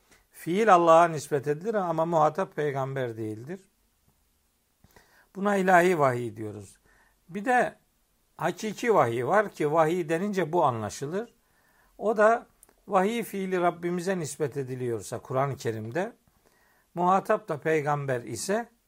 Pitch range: 140-190 Hz